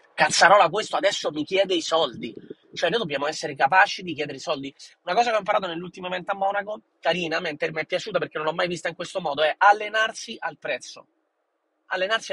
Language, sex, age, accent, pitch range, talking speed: Italian, male, 30-49, native, 180-250 Hz, 205 wpm